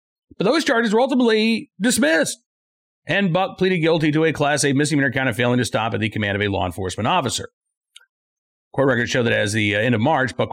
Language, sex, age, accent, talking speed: English, male, 40-59, American, 215 wpm